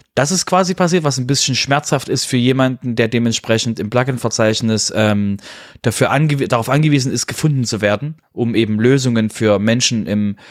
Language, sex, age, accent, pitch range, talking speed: German, male, 20-39, German, 110-135 Hz, 170 wpm